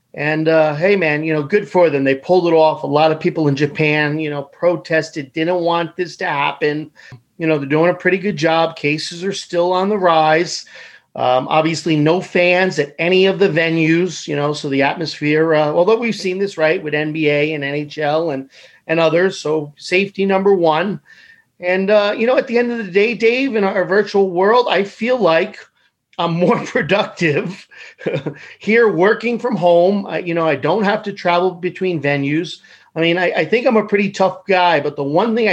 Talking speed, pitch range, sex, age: 205 wpm, 150-195 Hz, male, 40-59